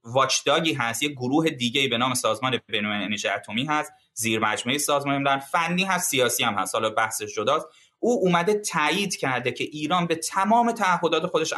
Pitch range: 130-175 Hz